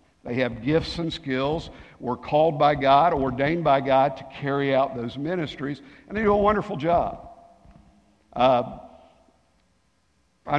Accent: American